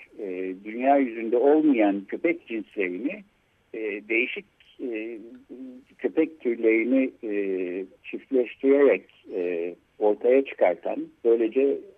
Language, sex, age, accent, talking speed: Turkish, male, 60-79, native, 60 wpm